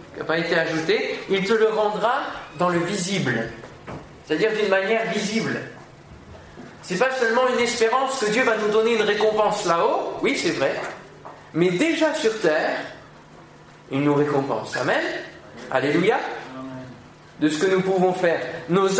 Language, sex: French, male